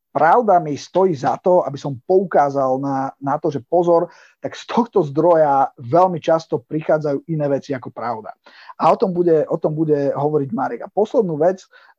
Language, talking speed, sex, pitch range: Slovak, 180 wpm, male, 140-160 Hz